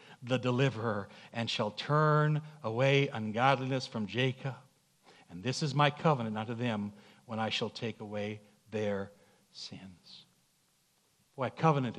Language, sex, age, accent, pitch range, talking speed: English, male, 60-79, American, 115-155 Hz, 130 wpm